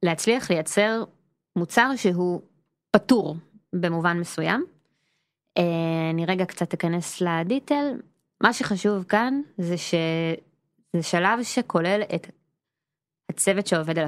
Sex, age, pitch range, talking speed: female, 20-39, 165-220 Hz, 100 wpm